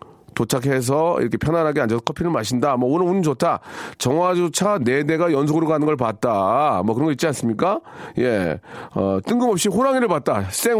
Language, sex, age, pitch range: Korean, male, 40-59, 135-210 Hz